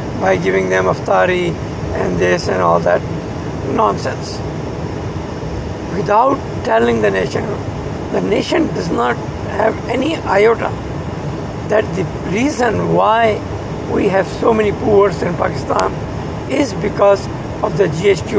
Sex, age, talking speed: male, 60-79, 120 wpm